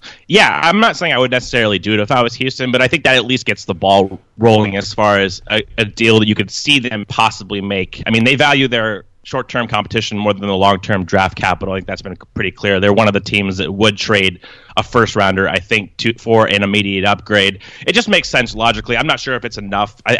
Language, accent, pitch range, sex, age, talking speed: English, American, 105-125 Hz, male, 30-49, 250 wpm